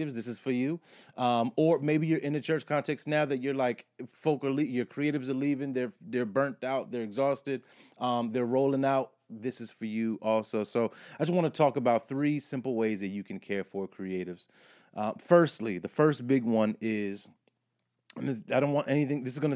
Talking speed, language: 210 wpm, English